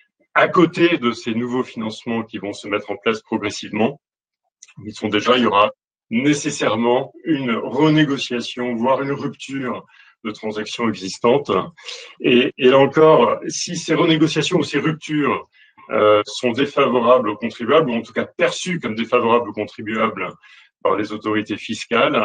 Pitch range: 115-145 Hz